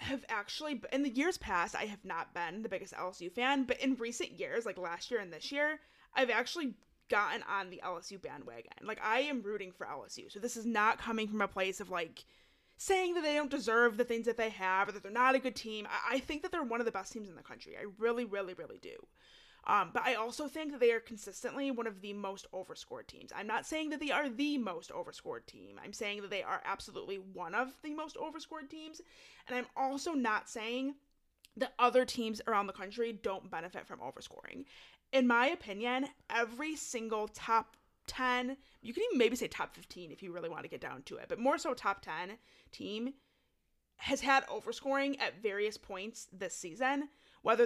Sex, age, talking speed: female, 30-49, 215 wpm